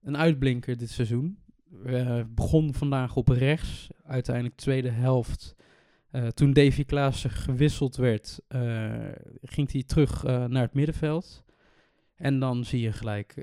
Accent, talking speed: Dutch, 145 wpm